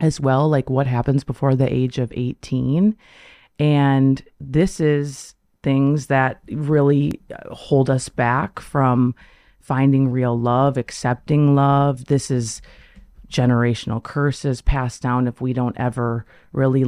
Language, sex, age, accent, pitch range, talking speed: English, female, 30-49, American, 125-145 Hz, 130 wpm